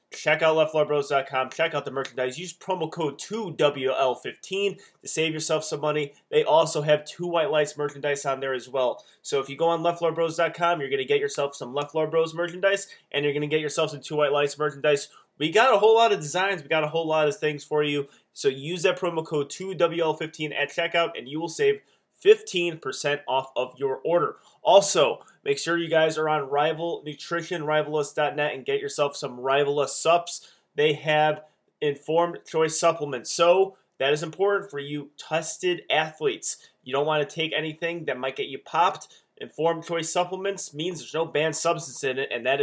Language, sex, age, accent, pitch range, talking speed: English, male, 20-39, American, 145-175 Hz, 195 wpm